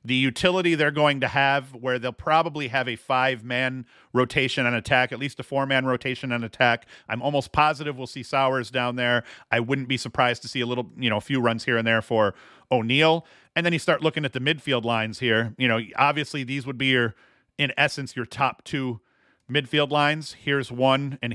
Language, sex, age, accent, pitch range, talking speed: English, male, 40-59, American, 120-145 Hz, 210 wpm